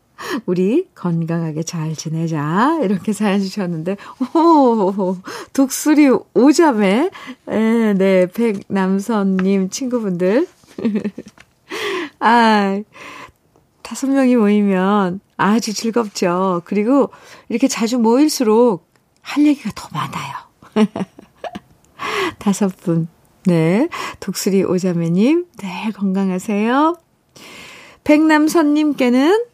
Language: Korean